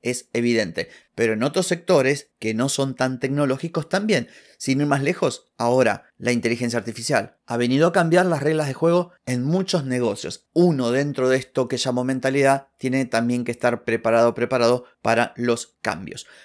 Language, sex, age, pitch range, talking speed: Spanish, male, 30-49, 125-175 Hz, 170 wpm